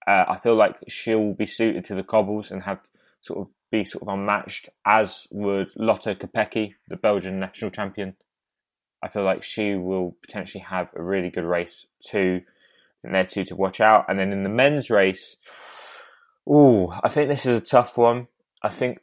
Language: English